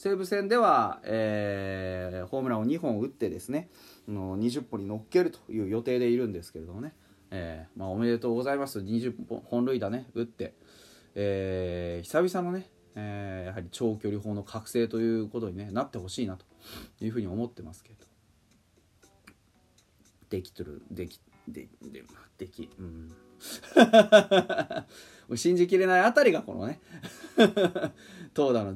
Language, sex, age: Japanese, male, 30-49